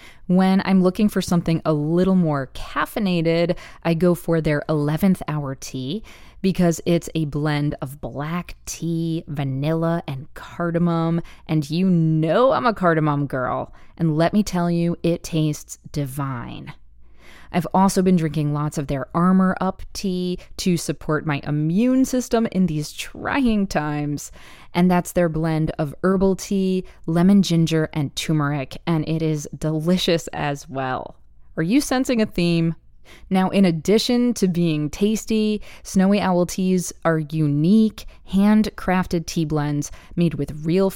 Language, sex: English, female